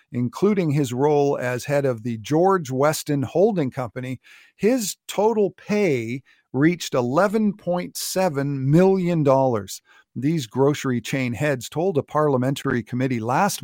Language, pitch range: English, 130-170 Hz